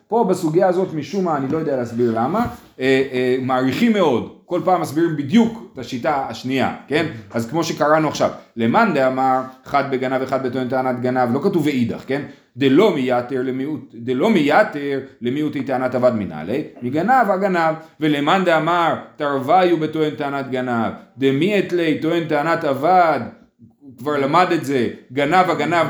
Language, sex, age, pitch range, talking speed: Hebrew, male, 30-49, 130-180 Hz, 155 wpm